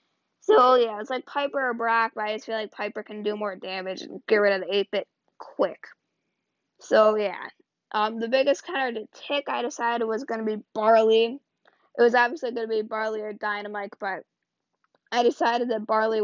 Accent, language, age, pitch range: American, English, 10-29, 215-255 Hz